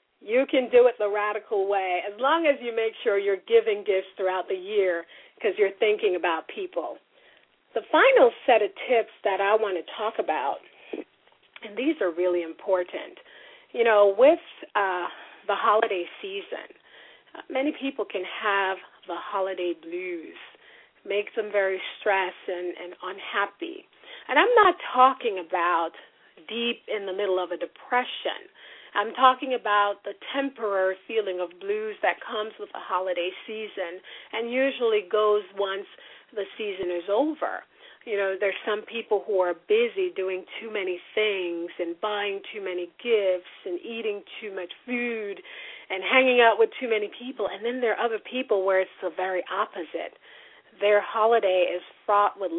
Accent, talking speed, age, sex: American, 160 wpm, 40-59, female